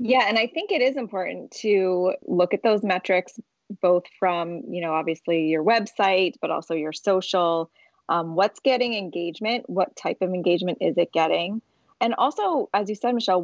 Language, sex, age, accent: English, female, 20-39, American